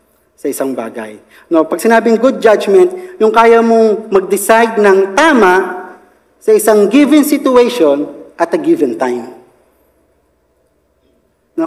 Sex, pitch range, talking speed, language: male, 185-285 Hz, 120 wpm, Filipino